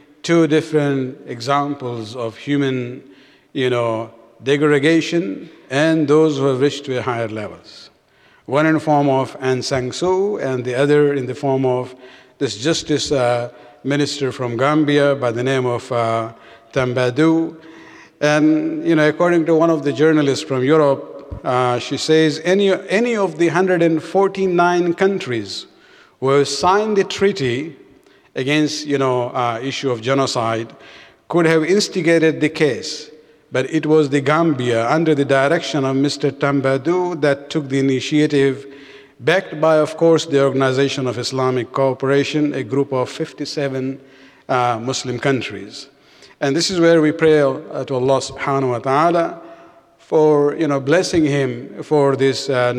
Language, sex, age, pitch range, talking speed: English, male, 50-69, 130-155 Hz, 145 wpm